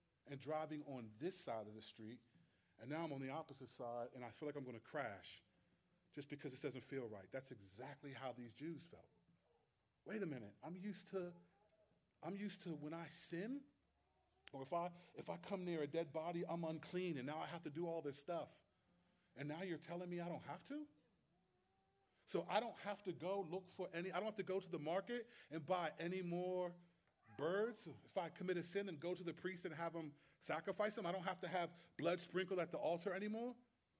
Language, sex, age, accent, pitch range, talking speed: English, male, 30-49, American, 150-195 Hz, 220 wpm